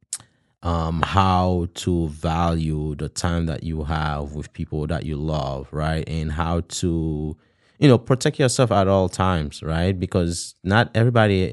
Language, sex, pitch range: English, male, 80-100 Hz